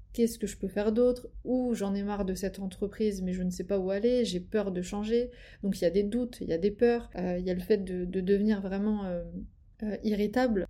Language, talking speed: French, 265 wpm